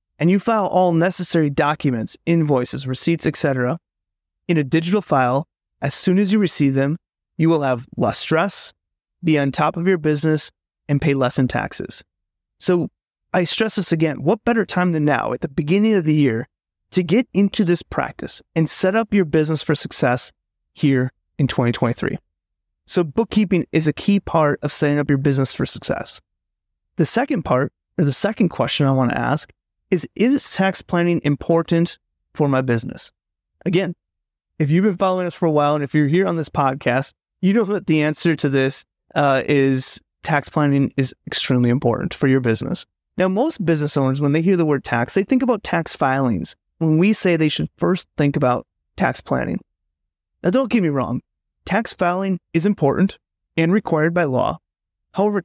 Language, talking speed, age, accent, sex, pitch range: English, 185 wpm, 30-49, American, male, 135-185 Hz